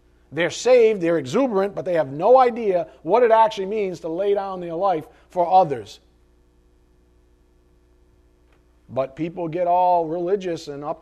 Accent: American